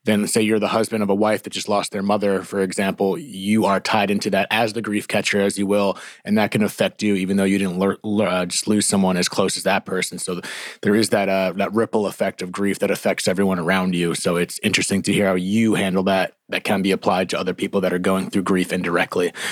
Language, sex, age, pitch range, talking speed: English, male, 30-49, 100-120 Hz, 260 wpm